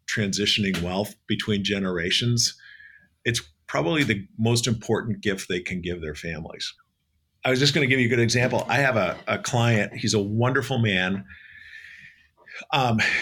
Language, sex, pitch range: English, male, 95-120 Hz